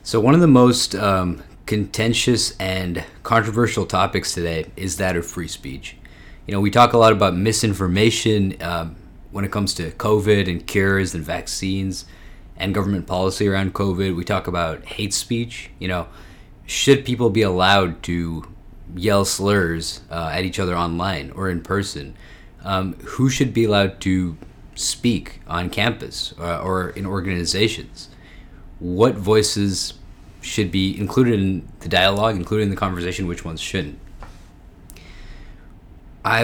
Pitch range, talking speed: 90-110 Hz, 145 wpm